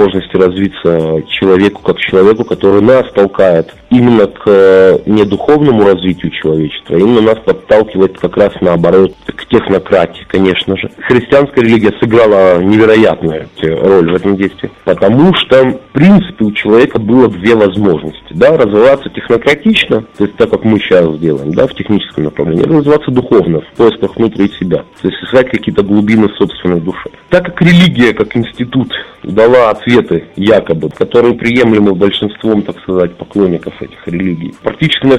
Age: 40-59